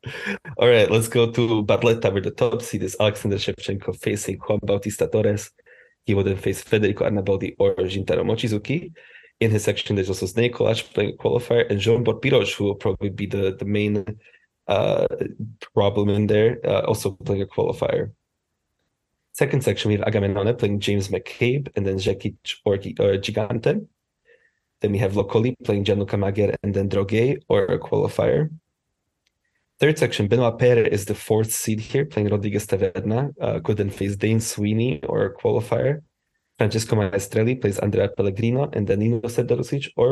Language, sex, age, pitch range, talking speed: English, male, 20-39, 100-120 Hz, 170 wpm